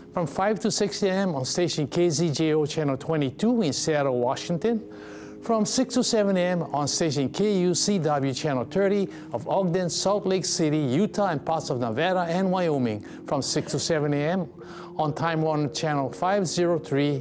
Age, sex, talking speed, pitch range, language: 60-79, male, 155 wpm, 140-175 Hz, English